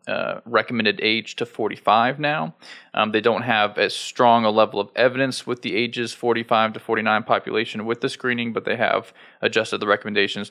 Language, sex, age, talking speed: English, male, 20-39, 185 wpm